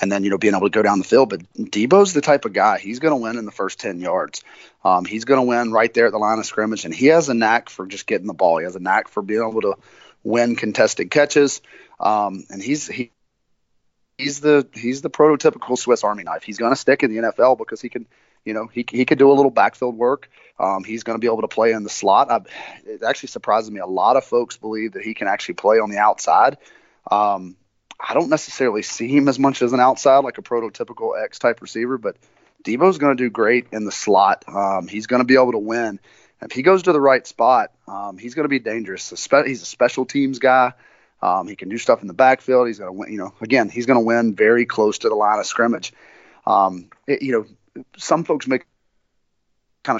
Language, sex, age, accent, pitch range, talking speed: English, male, 30-49, American, 110-135 Hz, 245 wpm